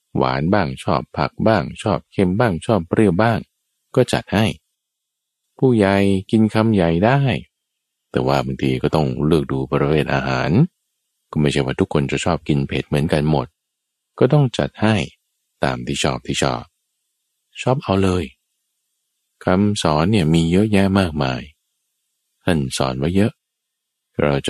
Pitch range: 70-90 Hz